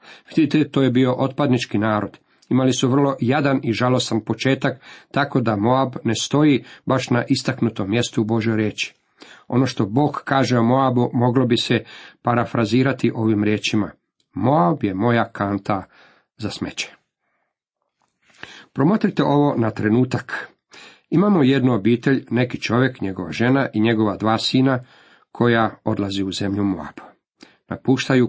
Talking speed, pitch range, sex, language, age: 135 wpm, 110-130 Hz, male, Croatian, 40-59